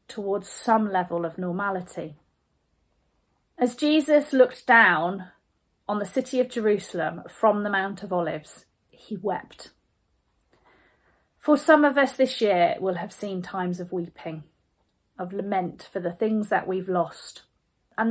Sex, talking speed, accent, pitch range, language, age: female, 140 wpm, British, 185-240 Hz, English, 30-49